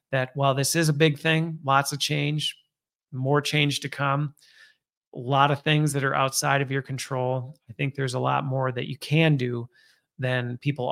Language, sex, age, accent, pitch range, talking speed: English, male, 30-49, American, 130-150 Hz, 200 wpm